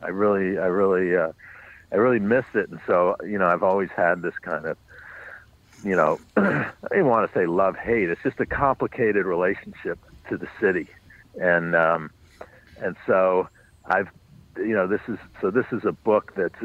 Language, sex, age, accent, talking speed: English, male, 50-69, American, 185 wpm